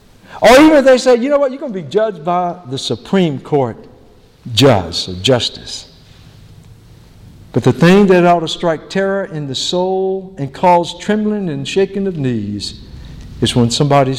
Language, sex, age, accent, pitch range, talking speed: English, male, 60-79, American, 125-185 Hz, 175 wpm